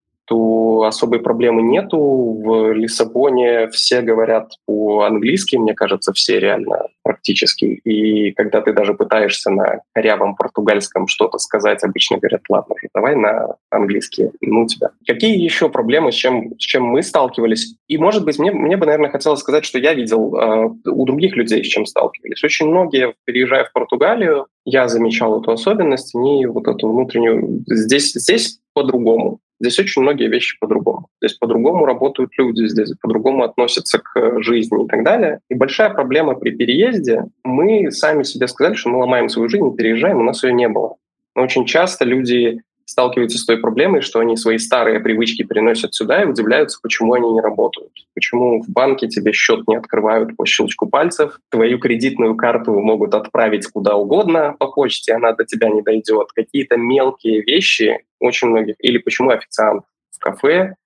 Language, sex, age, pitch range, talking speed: Russian, male, 20-39, 115-140 Hz, 165 wpm